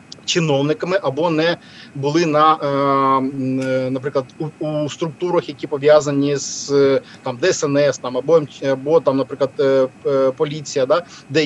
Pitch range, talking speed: 135-185 Hz, 115 wpm